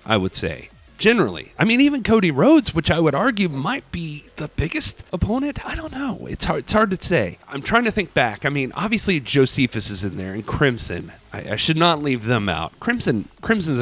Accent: American